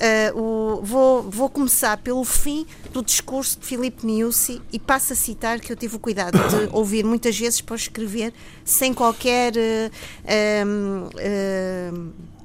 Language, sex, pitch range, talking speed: Portuguese, female, 200-245 Hz, 155 wpm